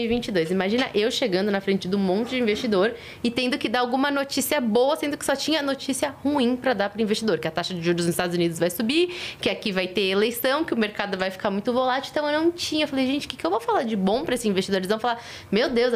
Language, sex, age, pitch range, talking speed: Portuguese, female, 20-39, 215-300 Hz, 270 wpm